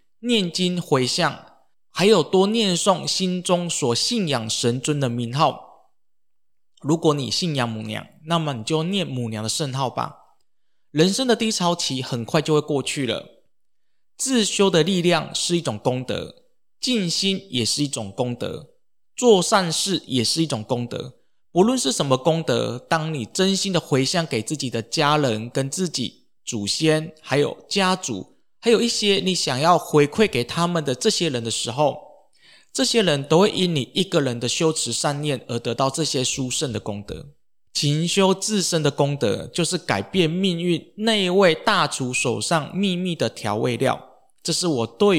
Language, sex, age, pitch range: Chinese, male, 20-39, 130-185 Hz